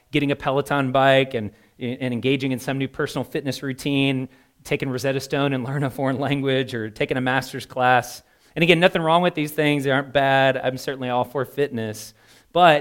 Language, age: English, 30-49